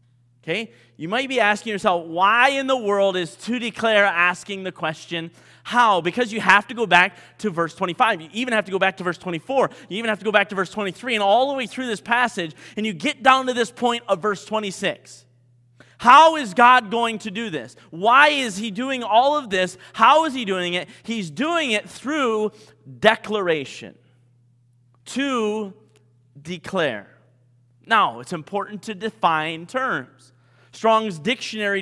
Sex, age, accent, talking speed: male, 30-49, American, 180 wpm